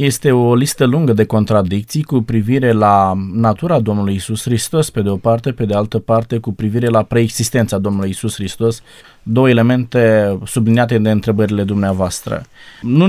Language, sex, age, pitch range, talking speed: Romanian, male, 20-39, 110-150 Hz, 160 wpm